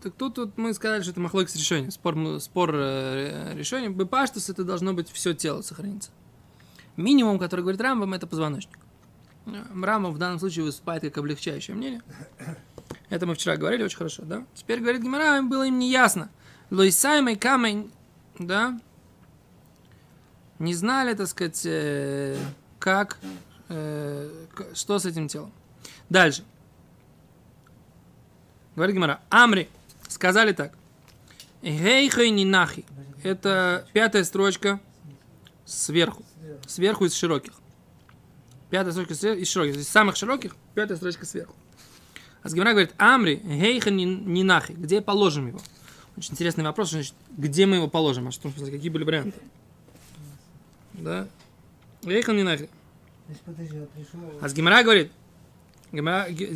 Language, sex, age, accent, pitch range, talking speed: Russian, male, 20-39, native, 160-205 Hz, 120 wpm